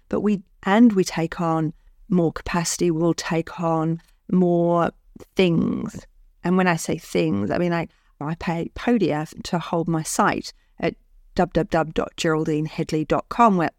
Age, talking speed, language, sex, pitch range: 40-59, 135 wpm, English, female, 170-200 Hz